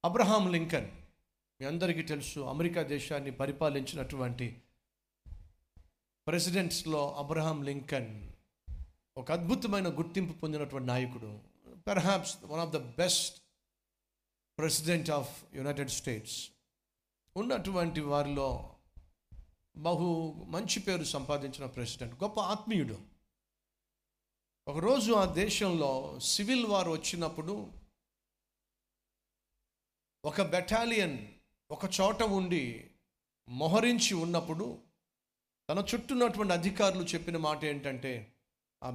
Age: 50-69